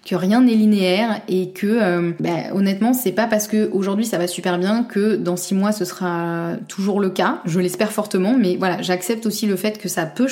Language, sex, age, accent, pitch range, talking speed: French, female, 20-39, French, 180-220 Hz, 225 wpm